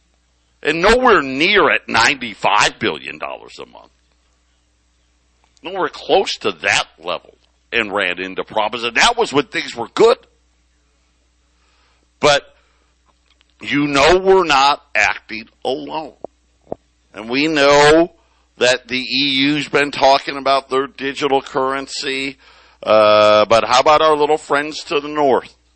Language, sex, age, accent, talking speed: English, male, 60-79, American, 125 wpm